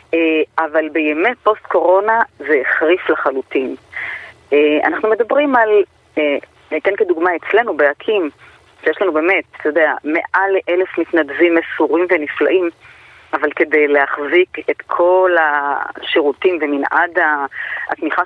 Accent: native